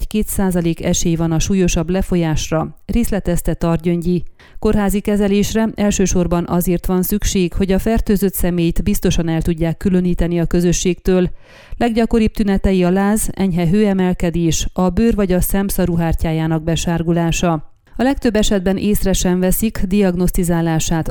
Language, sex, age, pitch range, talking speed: Hungarian, female, 30-49, 170-200 Hz, 125 wpm